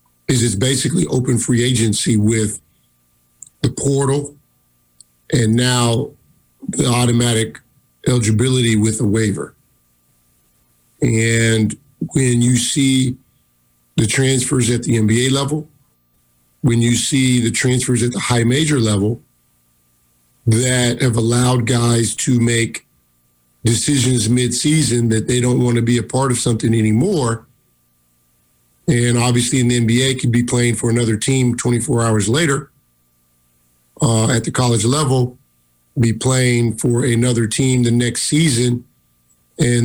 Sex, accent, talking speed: male, American, 125 wpm